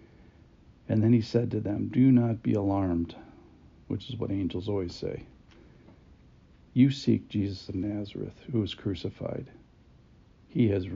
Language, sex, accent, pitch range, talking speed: English, male, American, 95-115 Hz, 140 wpm